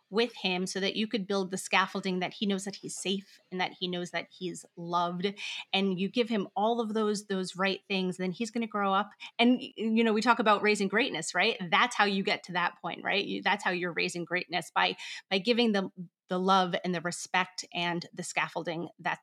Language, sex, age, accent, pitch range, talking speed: English, female, 30-49, American, 180-210 Hz, 230 wpm